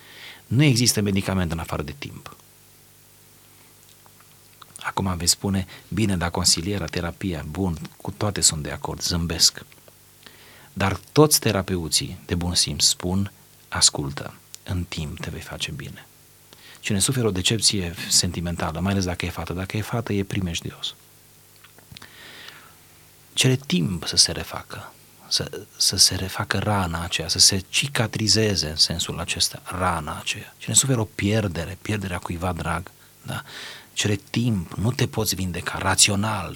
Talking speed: 140 wpm